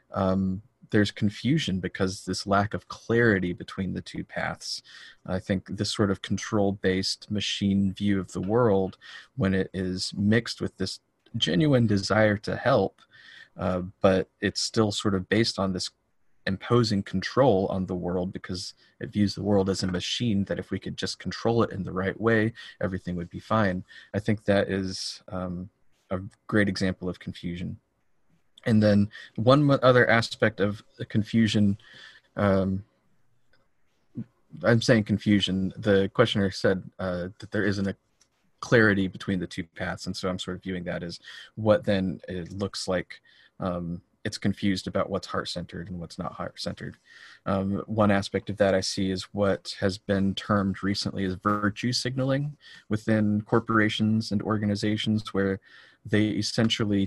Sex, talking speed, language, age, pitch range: male, 160 wpm, English, 30-49, 95-110 Hz